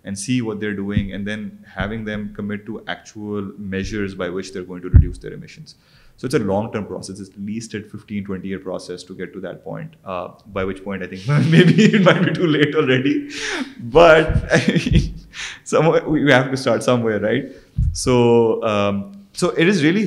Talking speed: 205 wpm